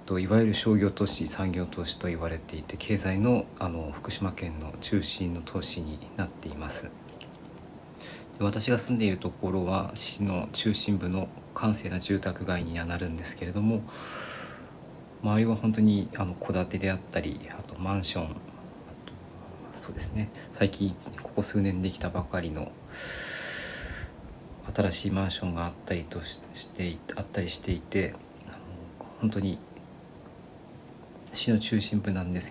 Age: 40-59